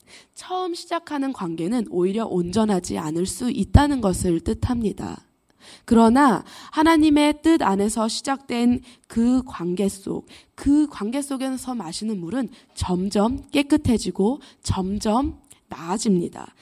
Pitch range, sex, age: 195-285 Hz, female, 20-39